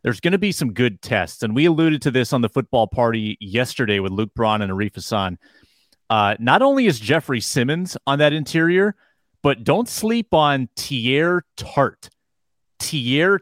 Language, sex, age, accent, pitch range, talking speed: English, male, 30-49, American, 115-155 Hz, 175 wpm